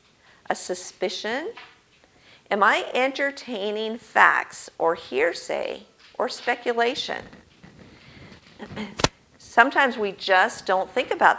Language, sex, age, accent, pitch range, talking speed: English, female, 50-69, American, 175-235 Hz, 85 wpm